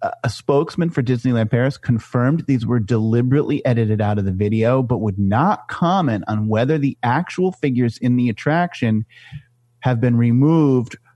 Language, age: English, 30-49